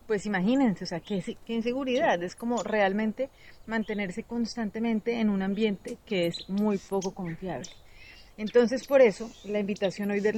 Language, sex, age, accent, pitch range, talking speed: Spanish, female, 30-49, Colombian, 190-230 Hz, 150 wpm